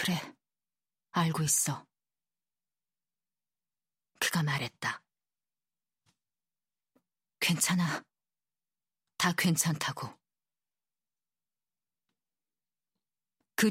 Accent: native